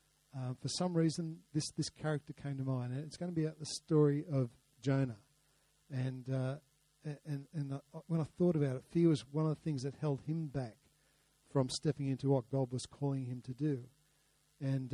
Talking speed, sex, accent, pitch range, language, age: 205 wpm, male, Australian, 130-155 Hz, English, 50-69